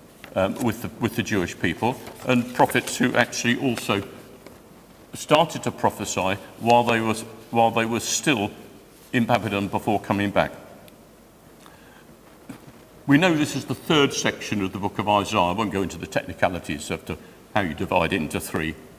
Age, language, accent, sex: 50-69, English, British, male